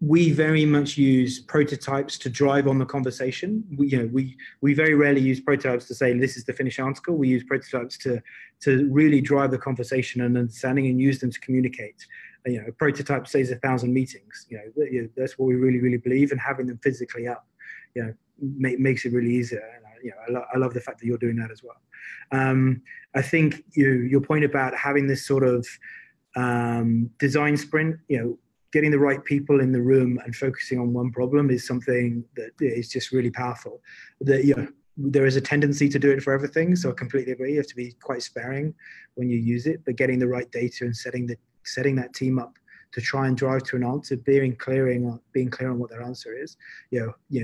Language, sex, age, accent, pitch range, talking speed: English, male, 20-39, British, 125-140 Hz, 225 wpm